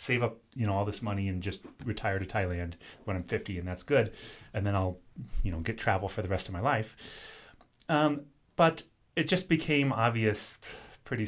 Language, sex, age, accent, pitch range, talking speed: English, male, 30-49, American, 90-110 Hz, 200 wpm